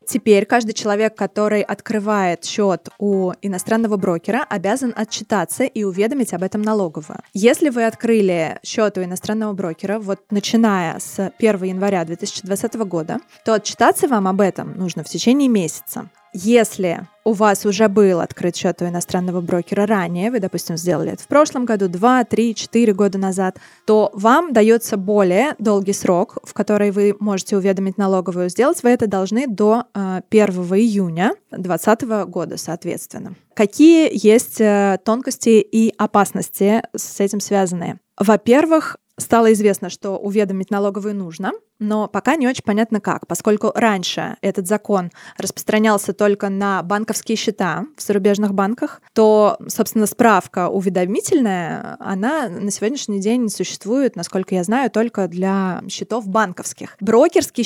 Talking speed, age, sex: 140 wpm, 20-39, female